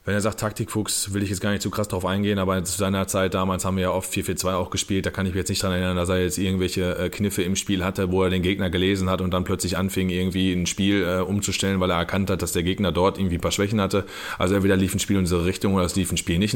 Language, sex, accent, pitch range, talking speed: German, male, German, 95-110 Hz, 295 wpm